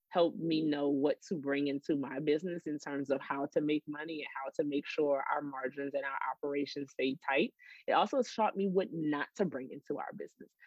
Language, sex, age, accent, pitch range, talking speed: English, female, 20-39, American, 140-160 Hz, 220 wpm